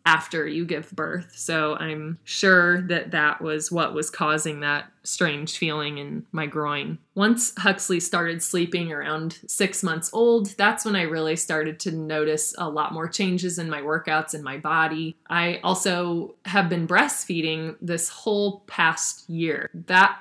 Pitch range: 155-185 Hz